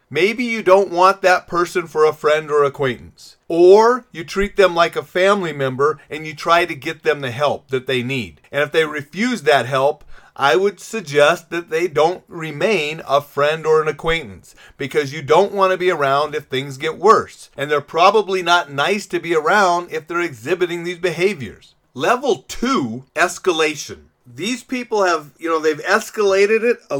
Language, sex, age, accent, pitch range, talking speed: English, male, 40-59, American, 145-190 Hz, 185 wpm